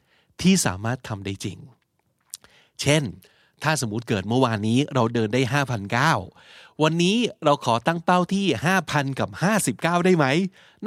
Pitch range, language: 115-160 Hz, Thai